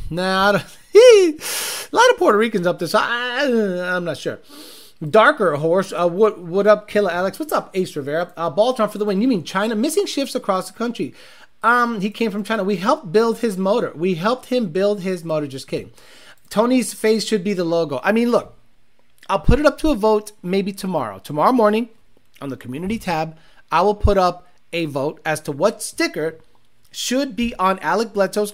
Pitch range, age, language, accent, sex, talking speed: 175-235 Hz, 30-49, English, American, male, 200 wpm